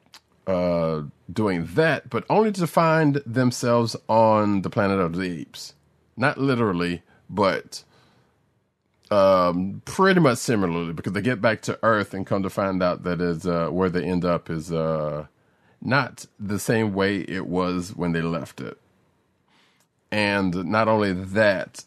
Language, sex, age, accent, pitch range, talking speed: English, male, 30-49, American, 85-110 Hz, 150 wpm